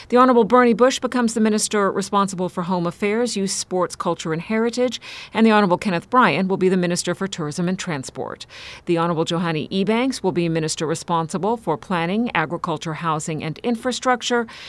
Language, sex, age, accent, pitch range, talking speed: English, female, 50-69, American, 165-220 Hz, 175 wpm